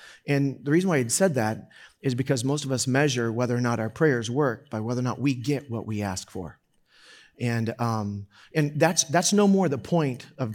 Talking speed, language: 230 wpm, English